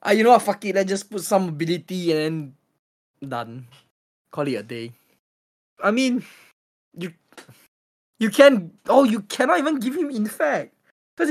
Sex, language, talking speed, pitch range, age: male, English, 175 wpm, 135-195 Hz, 20-39